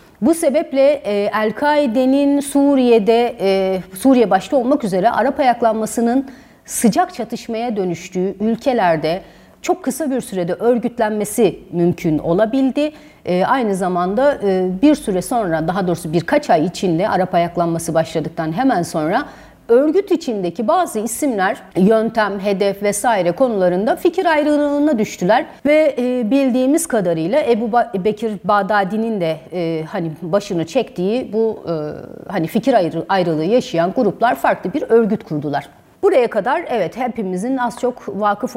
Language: Turkish